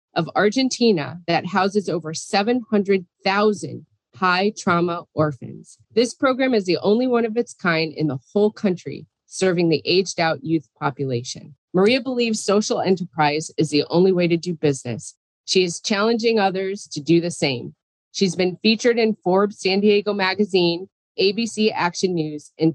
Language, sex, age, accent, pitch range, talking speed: English, female, 30-49, American, 160-210 Hz, 155 wpm